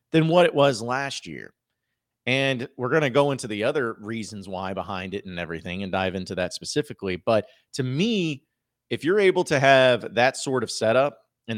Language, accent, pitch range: English, American, 110-135 Hz